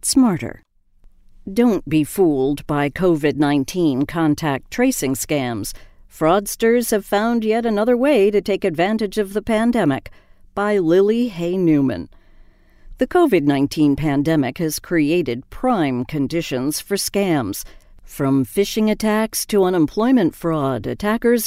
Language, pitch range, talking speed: English, 145-205 Hz, 115 wpm